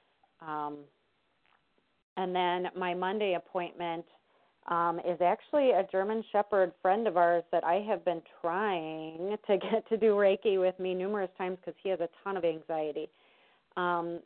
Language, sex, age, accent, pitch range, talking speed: English, female, 40-59, American, 170-195 Hz, 155 wpm